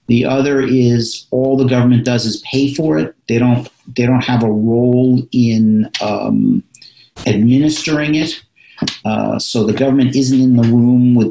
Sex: male